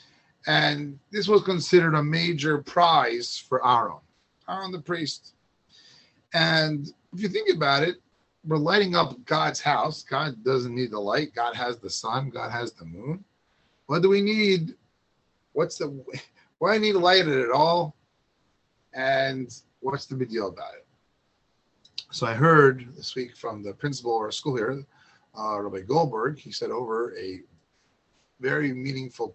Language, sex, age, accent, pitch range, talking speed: English, male, 30-49, American, 130-175 Hz, 160 wpm